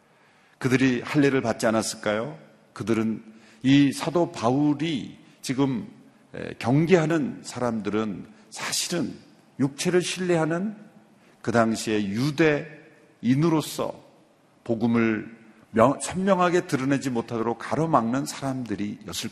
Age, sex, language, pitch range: 50-69, male, Korean, 115-165 Hz